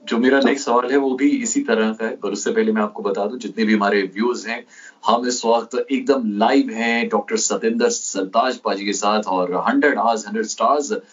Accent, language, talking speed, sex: native, Hindi, 210 wpm, male